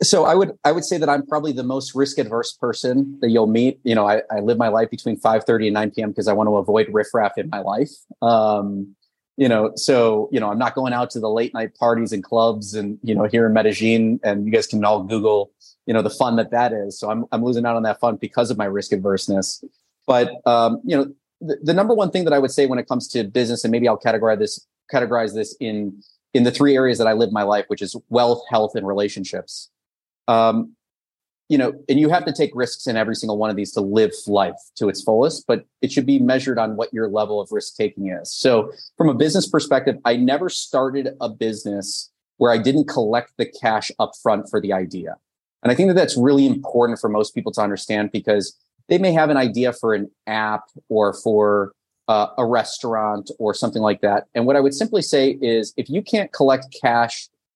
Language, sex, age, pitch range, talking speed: English, male, 30-49, 105-135 Hz, 235 wpm